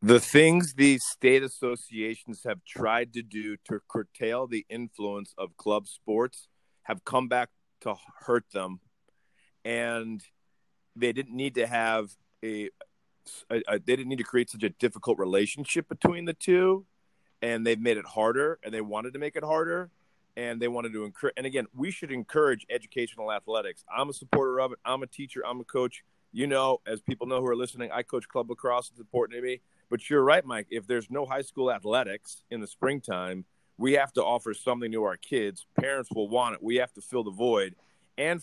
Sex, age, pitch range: male, 40-59, 110-130 Hz